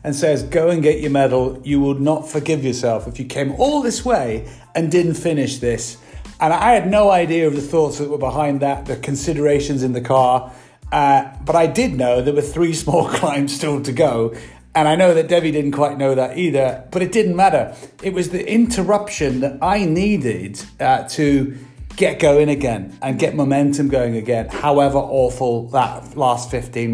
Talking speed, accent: 195 wpm, British